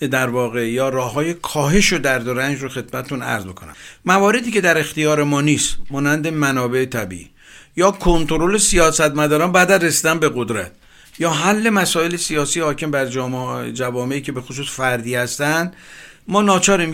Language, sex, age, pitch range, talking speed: Persian, male, 50-69, 135-180 Hz, 150 wpm